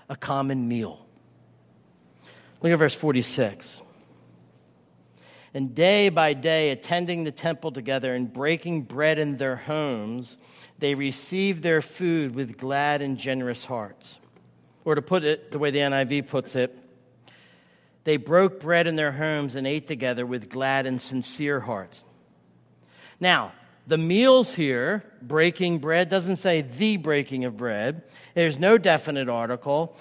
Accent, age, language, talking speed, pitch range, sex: American, 50-69, English, 140 wpm, 125-170 Hz, male